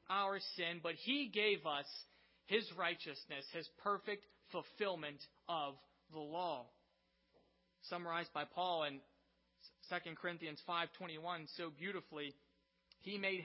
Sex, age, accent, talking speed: male, 30-49, American, 115 wpm